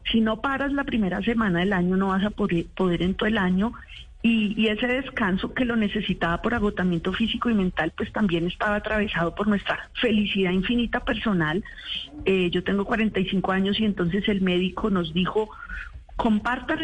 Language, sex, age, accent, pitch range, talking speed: Spanish, female, 40-59, Colombian, 185-230 Hz, 175 wpm